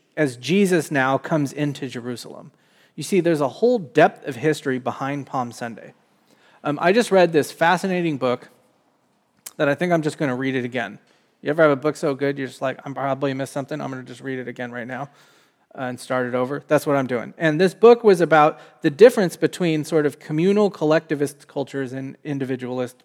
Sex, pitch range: male, 130-170 Hz